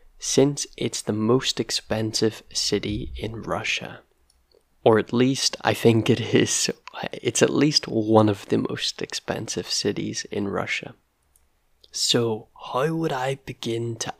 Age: 20-39